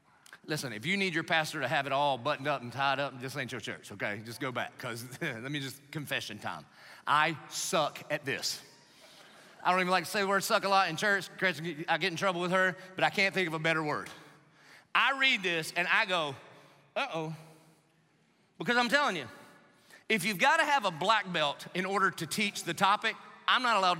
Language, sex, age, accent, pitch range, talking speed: English, male, 30-49, American, 140-185 Hz, 225 wpm